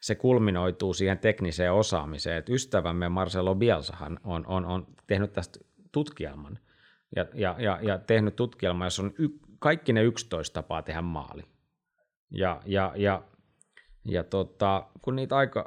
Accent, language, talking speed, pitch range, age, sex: native, Finnish, 145 wpm, 90-120 Hz, 30-49, male